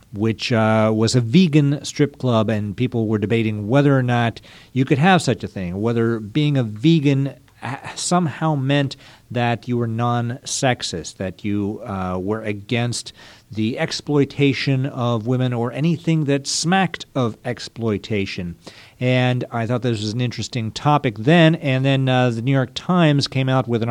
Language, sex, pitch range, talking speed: English, male, 110-140 Hz, 165 wpm